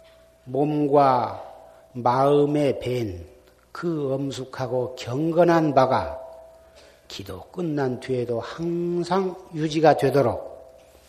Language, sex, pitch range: Korean, male, 120-155 Hz